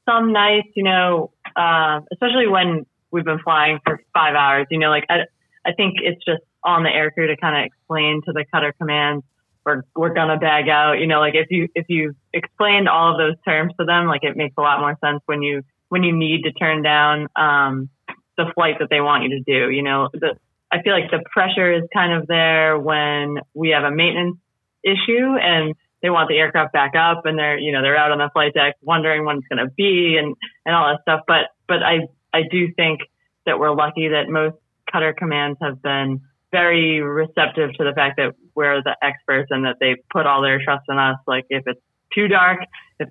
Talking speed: 225 wpm